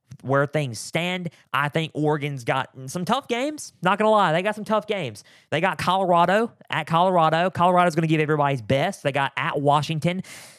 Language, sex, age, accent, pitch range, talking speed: English, male, 20-39, American, 135-175 Hz, 195 wpm